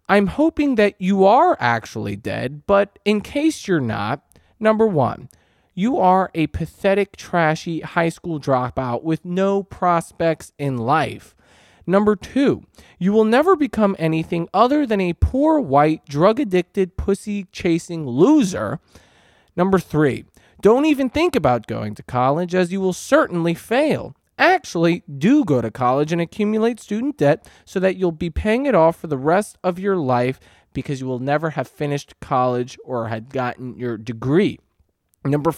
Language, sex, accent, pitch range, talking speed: English, male, American, 130-195 Hz, 155 wpm